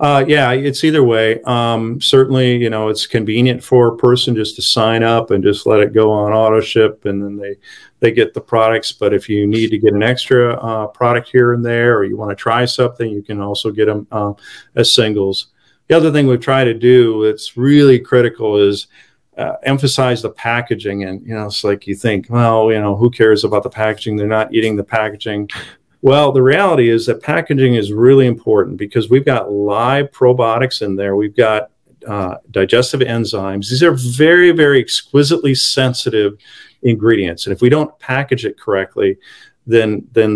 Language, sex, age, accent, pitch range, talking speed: English, male, 50-69, American, 105-125 Hz, 200 wpm